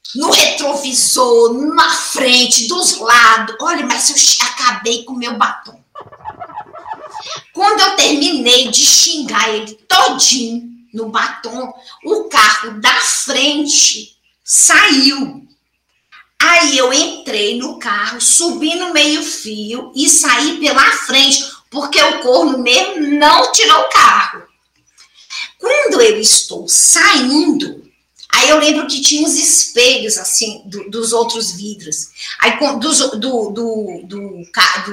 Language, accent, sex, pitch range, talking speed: Portuguese, Brazilian, female, 230-305 Hz, 120 wpm